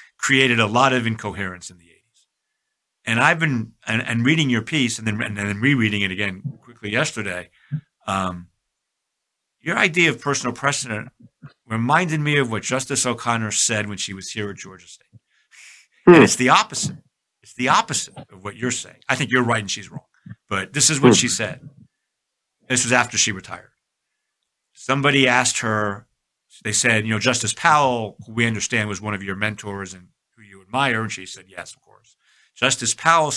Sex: male